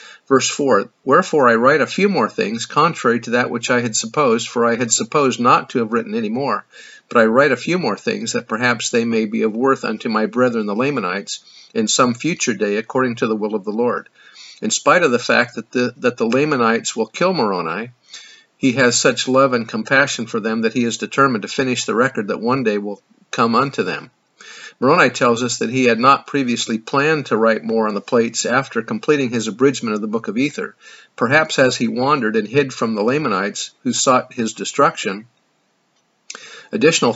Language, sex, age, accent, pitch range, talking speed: English, male, 50-69, American, 115-150 Hz, 210 wpm